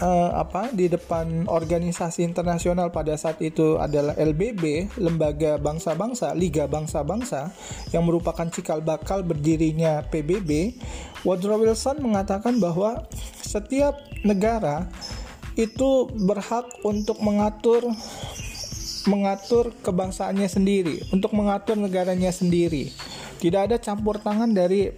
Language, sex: Indonesian, male